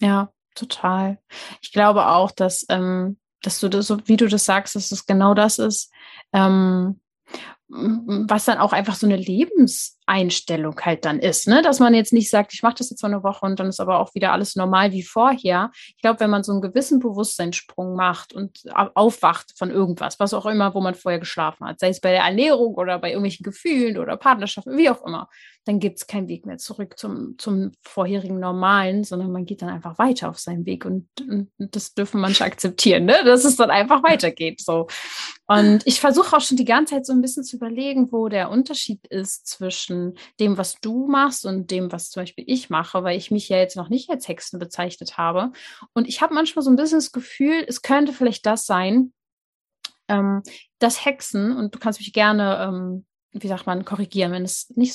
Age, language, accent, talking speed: 30-49, German, German, 205 wpm